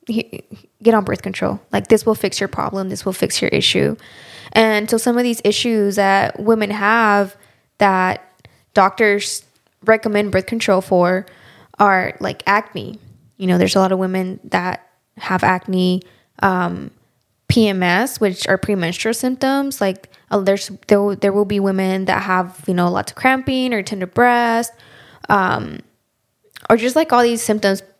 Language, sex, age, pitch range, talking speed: English, female, 10-29, 185-215 Hz, 160 wpm